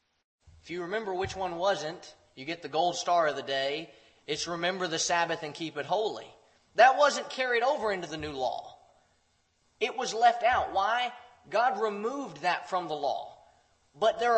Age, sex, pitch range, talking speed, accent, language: 20-39, male, 140-220 Hz, 180 wpm, American, English